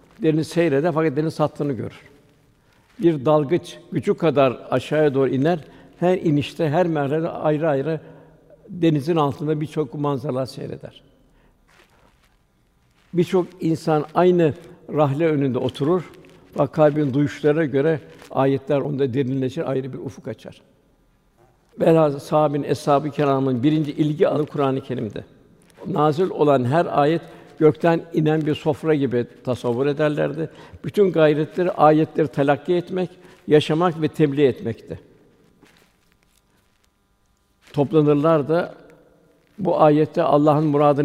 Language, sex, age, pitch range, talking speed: Turkish, male, 60-79, 135-160 Hz, 110 wpm